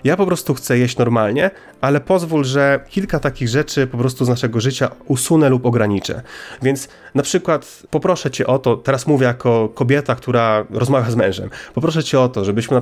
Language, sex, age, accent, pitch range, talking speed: Polish, male, 30-49, native, 125-150 Hz, 190 wpm